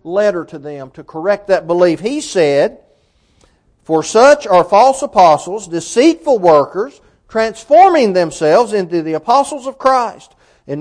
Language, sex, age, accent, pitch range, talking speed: English, male, 40-59, American, 180-250 Hz, 135 wpm